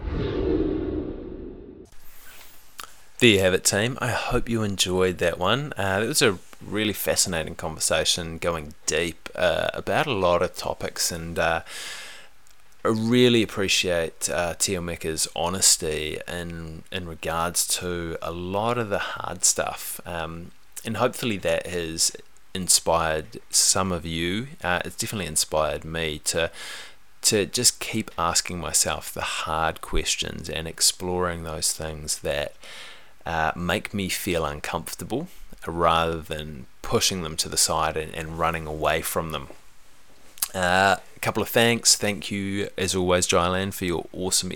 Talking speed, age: 140 wpm, 20-39